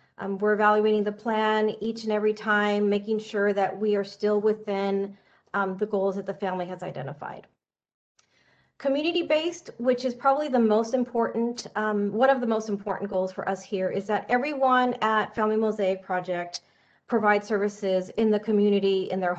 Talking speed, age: 175 wpm, 40-59